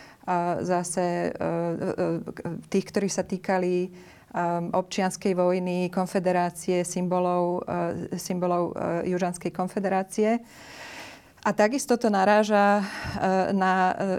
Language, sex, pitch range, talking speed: Slovak, female, 180-205 Hz, 70 wpm